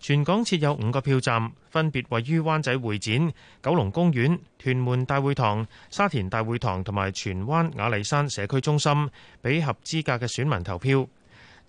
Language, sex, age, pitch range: Chinese, male, 30-49, 110-150 Hz